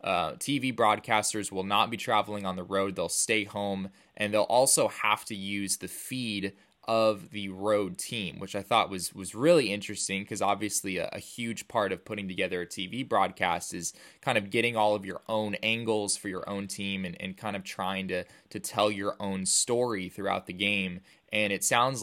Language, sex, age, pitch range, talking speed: English, male, 20-39, 100-115 Hz, 200 wpm